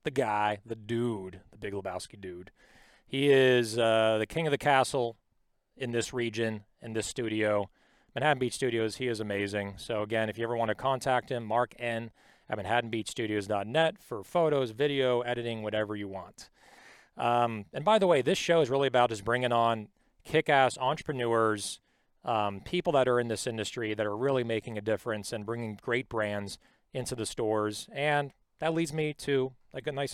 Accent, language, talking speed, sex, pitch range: American, English, 180 wpm, male, 110-135 Hz